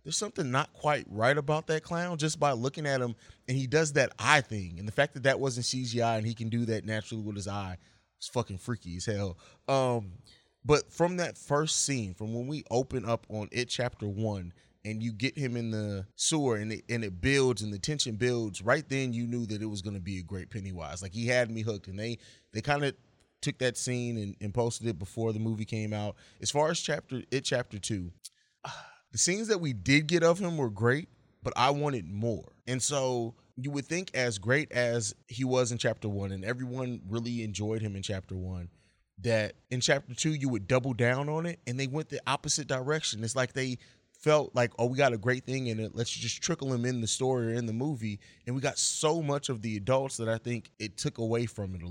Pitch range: 105-135 Hz